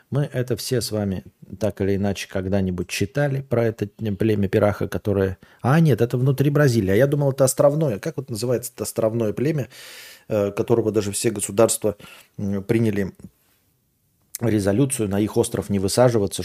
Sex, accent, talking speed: male, native, 155 wpm